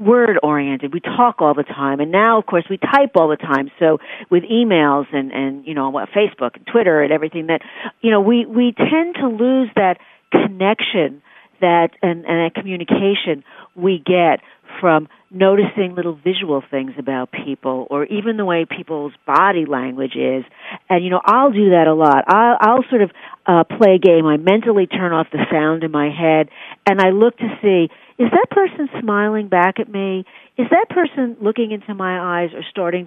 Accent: American